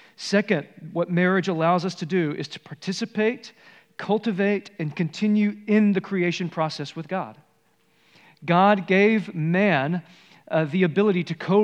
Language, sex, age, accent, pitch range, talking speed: English, male, 40-59, American, 170-210 Hz, 140 wpm